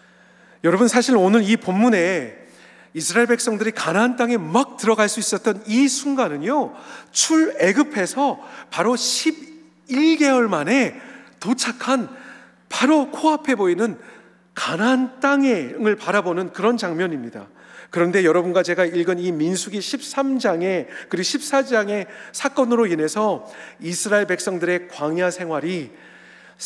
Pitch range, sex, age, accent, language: 165-240 Hz, male, 40-59, native, Korean